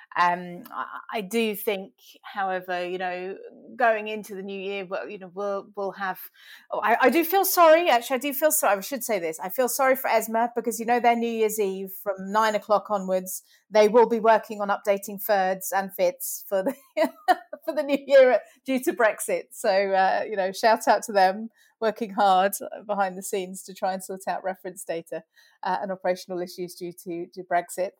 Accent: British